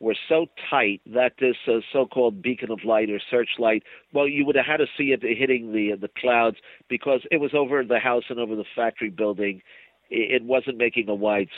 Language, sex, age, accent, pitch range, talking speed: English, male, 50-69, American, 105-125 Hz, 205 wpm